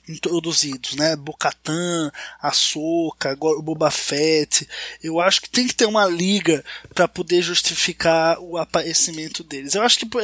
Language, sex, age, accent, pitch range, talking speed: Portuguese, male, 20-39, Brazilian, 165-205 Hz, 140 wpm